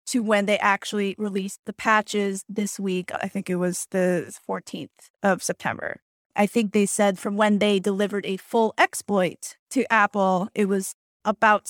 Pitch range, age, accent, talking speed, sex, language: 205-240 Hz, 20-39, American, 170 wpm, female, English